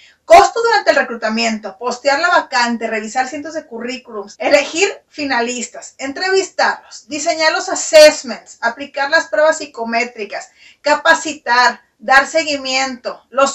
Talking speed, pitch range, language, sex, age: 110 wpm, 235-315 Hz, Spanish, female, 40-59